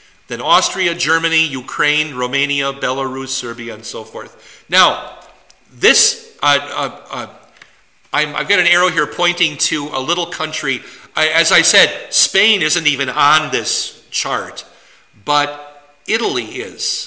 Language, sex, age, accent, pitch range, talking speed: English, male, 50-69, American, 125-150 Hz, 135 wpm